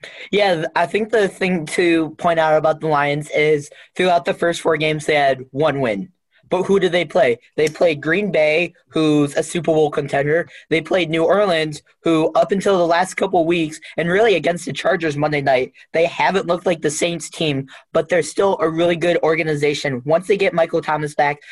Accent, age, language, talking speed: American, 20-39, English, 205 wpm